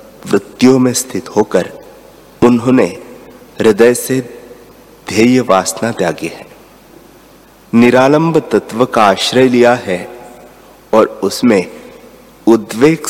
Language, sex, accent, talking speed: Hindi, male, native, 90 wpm